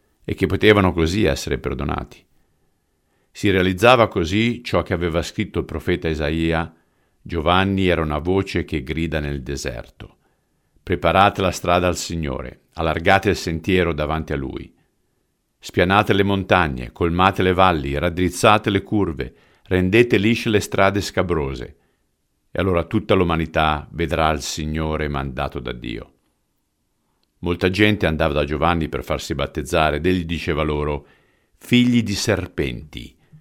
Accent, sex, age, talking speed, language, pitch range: native, male, 50-69, 135 wpm, Italian, 80-100 Hz